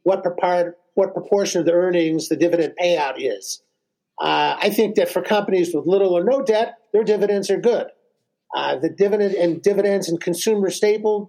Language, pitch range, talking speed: English, 160-200 Hz, 175 wpm